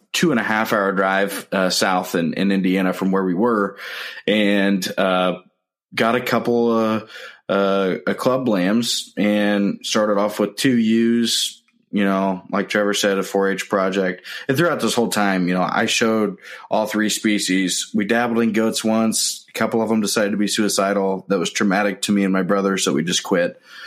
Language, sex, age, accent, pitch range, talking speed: English, male, 20-39, American, 95-110 Hz, 190 wpm